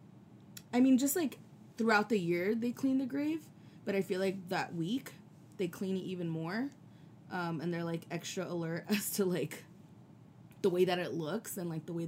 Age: 20-39